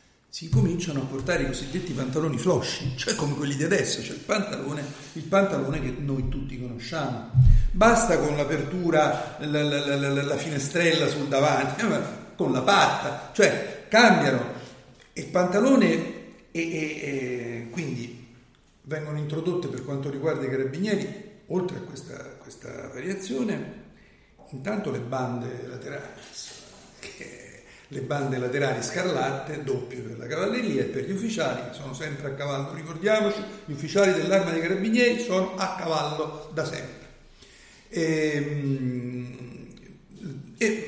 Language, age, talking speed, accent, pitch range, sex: Italian, 50-69, 130 wpm, native, 130-175 Hz, male